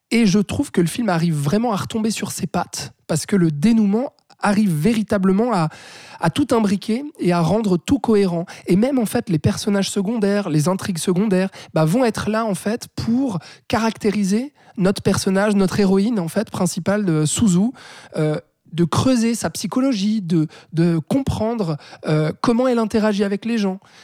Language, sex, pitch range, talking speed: French, male, 165-220 Hz, 160 wpm